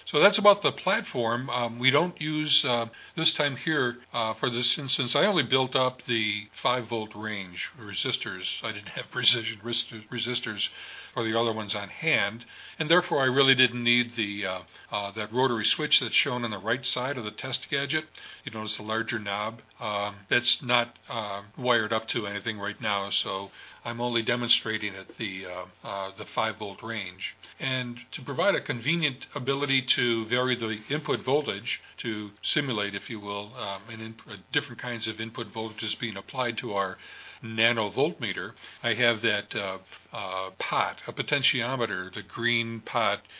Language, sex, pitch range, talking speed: English, male, 110-130 Hz, 175 wpm